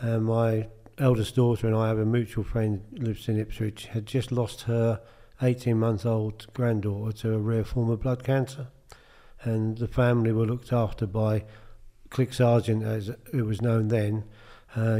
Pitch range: 110-125 Hz